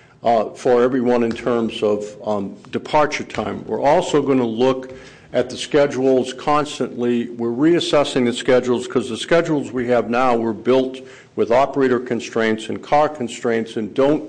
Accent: American